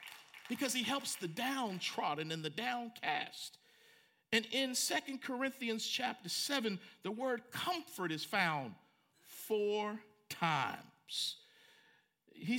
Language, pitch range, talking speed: English, 175-245 Hz, 105 wpm